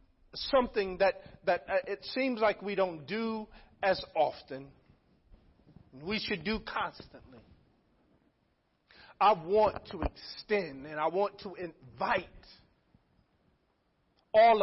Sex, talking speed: male, 105 wpm